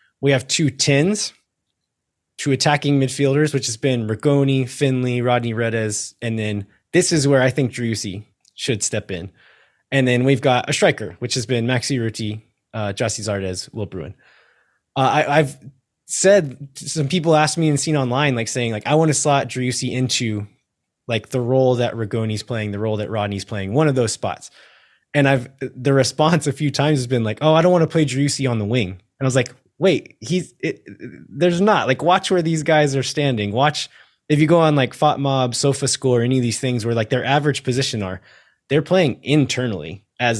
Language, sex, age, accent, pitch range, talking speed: English, male, 20-39, American, 110-145 Hz, 200 wpm